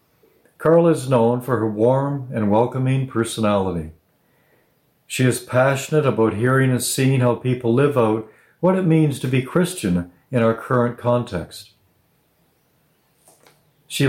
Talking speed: 130 wpm